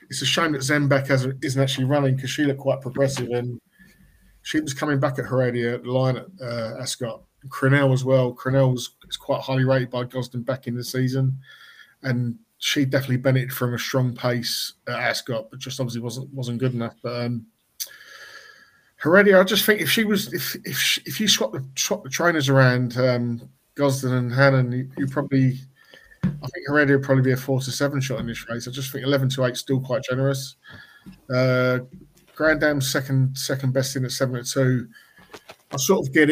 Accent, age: British, 20-39